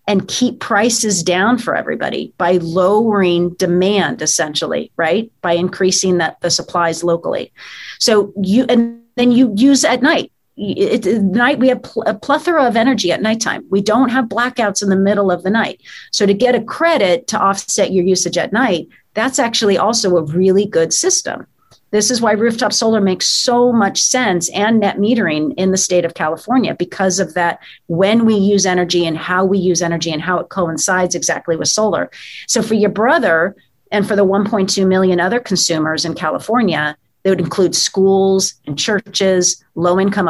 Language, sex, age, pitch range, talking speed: English, female, 40-59, 180-225 Hz, 180 wpm